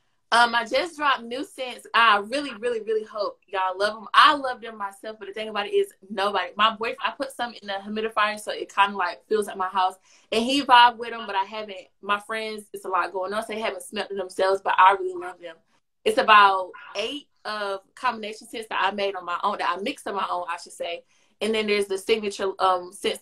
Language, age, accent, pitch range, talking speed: English, 20-39, American, 195-255 Hz, 250 wpm